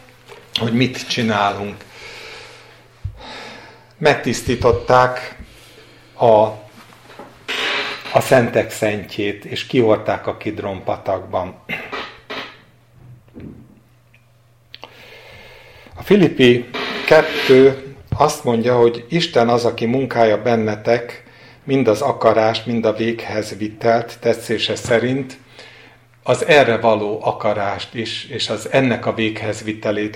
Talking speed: 85 wpm